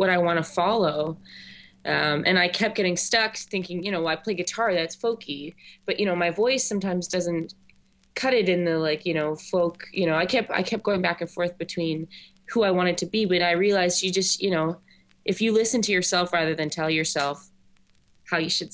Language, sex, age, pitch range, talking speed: English, female, 20-39, 160-190 Hz, 220 wpm